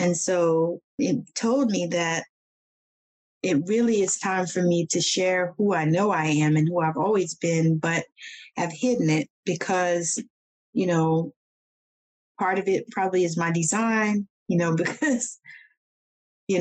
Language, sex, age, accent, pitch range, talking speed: English, female, 30-49, American, 165-190 Hz, 150 wpm